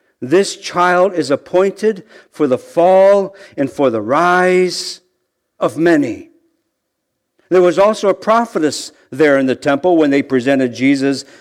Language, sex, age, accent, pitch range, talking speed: English, male, 50-69, American, 130-190 Hz, 135 wpm